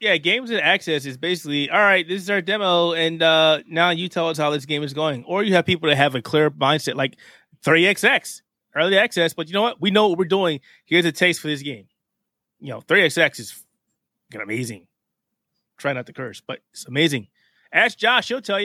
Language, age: English, 20-39